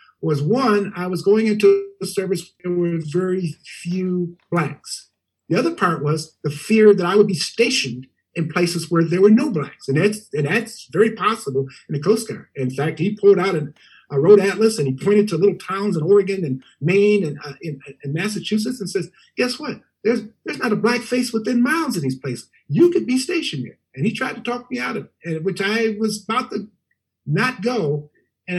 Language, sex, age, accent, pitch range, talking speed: English, male, 50-69, American, 150-215 Hz, 215 wpm